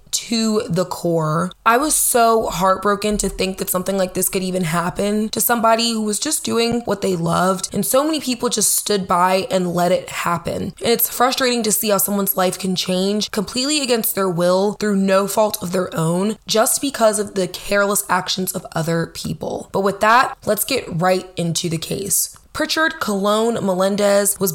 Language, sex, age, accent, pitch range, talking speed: English, female, 20-39, American, 185-230 Hz, 190 wpm